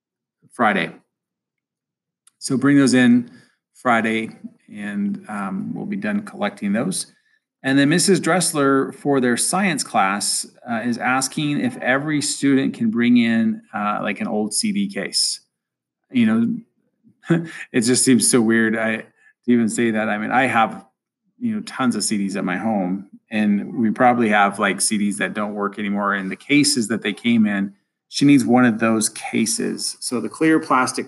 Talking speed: 170 wpm